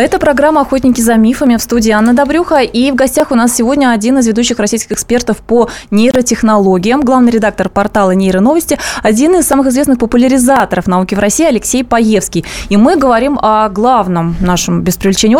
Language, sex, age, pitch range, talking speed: Russian, female, 20-39, 205-270 Hz, 170 wpm